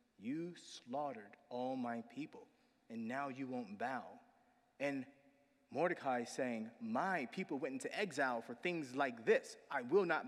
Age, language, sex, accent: 30-49, English, male, American